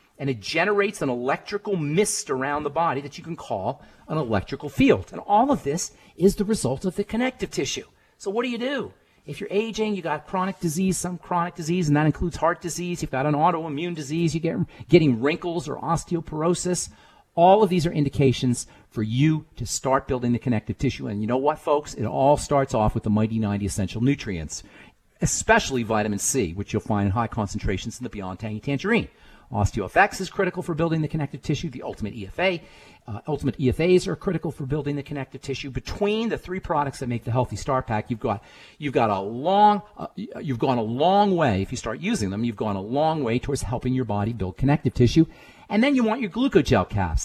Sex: male